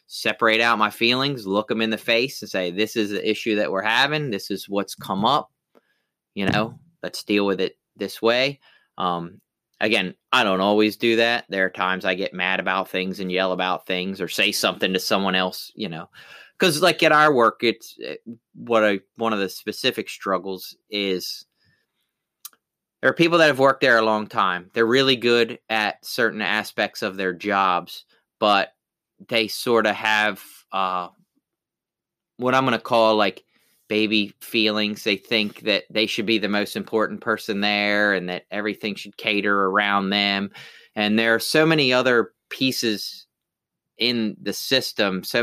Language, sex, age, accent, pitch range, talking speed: English, male, 30-49, American, 100-120 Hz, 175 wpm